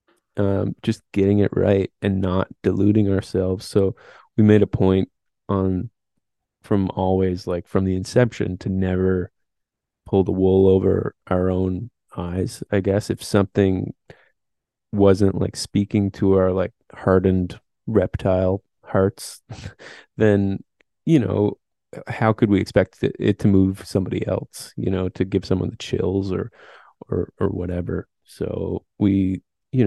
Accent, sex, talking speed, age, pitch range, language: American, male, 140 wpm, 20-39, 95-105 Hz, English